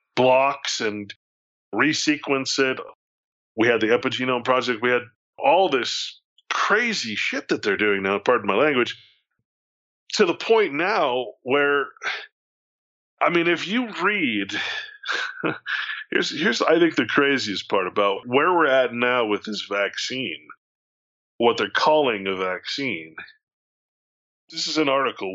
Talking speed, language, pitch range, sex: 135 wpm, English, 110-160 Hz, male